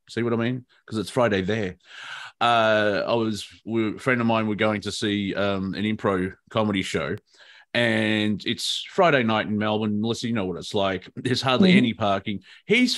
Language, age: English, 30-49